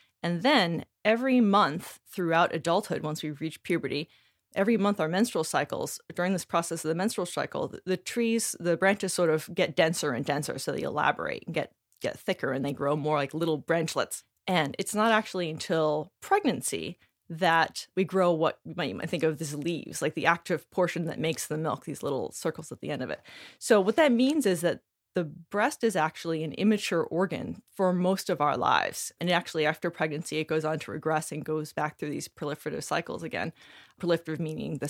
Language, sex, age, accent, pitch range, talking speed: English, female, 20-39, American, 155-190 Hz, 205 wpm